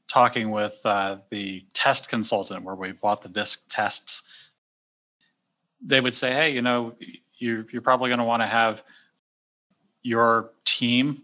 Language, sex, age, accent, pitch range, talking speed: English, male, 30-49, American, 105-120 Hz, 150 wpm